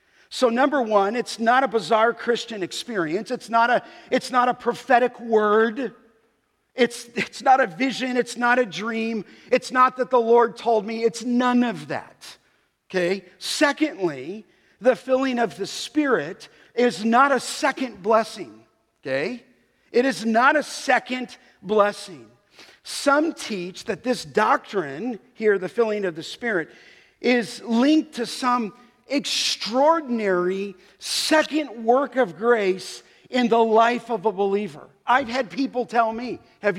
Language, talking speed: English, 145 wpm